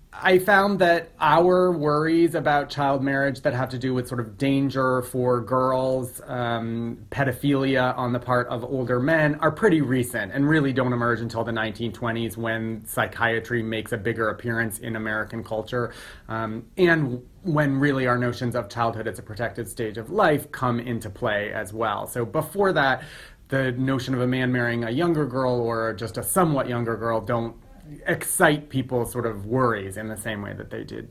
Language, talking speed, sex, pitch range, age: English, 185 wpm, male, 115-145 Hz, 30-49